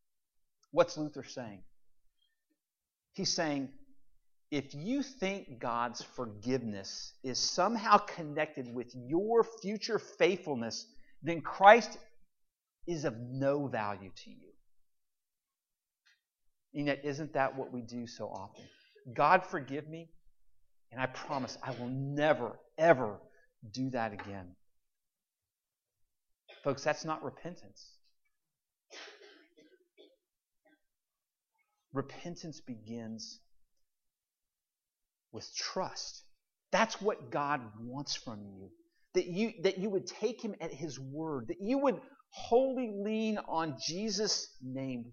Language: English